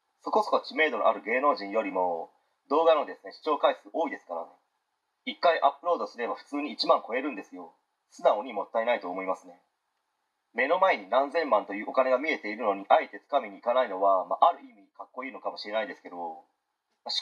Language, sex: Japanese, male